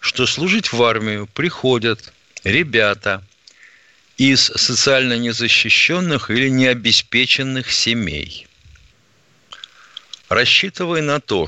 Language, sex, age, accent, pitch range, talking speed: Russian, male, 50-69, native, 105-150 Hz, 80 wpm